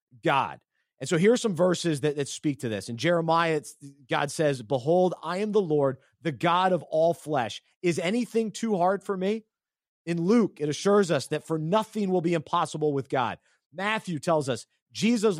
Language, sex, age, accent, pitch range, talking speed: English, male, 30-49, American, 145-200 Hz, 190 wpm